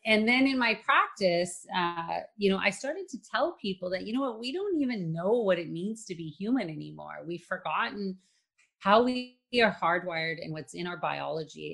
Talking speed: 200 wpm